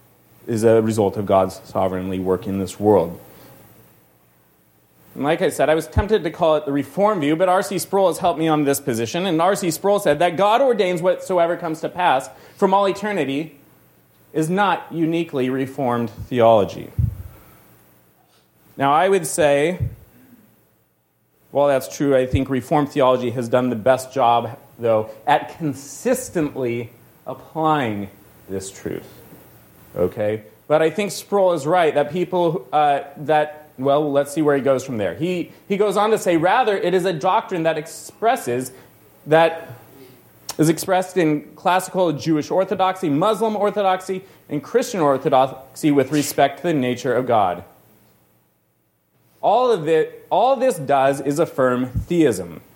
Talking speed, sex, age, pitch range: 150 wpm, male, 30-49, 120-180 Hz